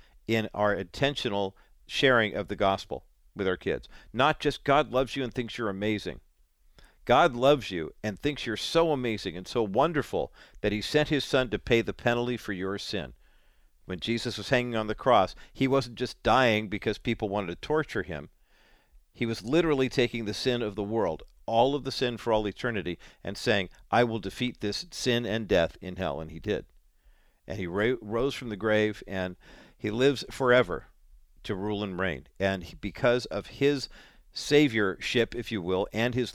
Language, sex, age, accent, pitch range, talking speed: English, male, 50-69, American, 100-130 Hz, 185 wpm